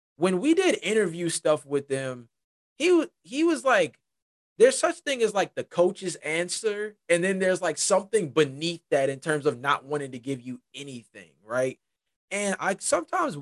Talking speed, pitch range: 180 wpm, 130-175 Hz